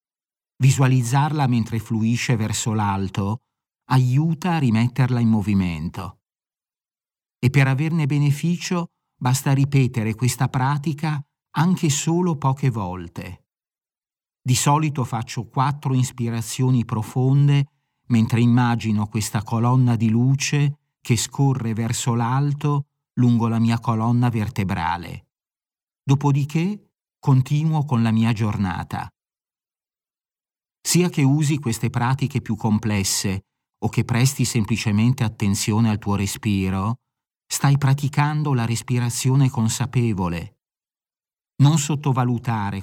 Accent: native